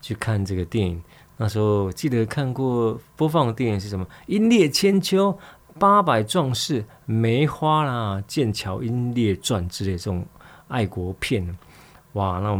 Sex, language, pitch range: male, Chinese, 95-120 Hz